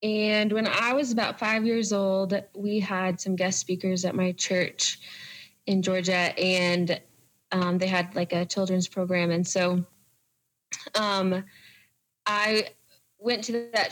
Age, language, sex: 20-39, English, female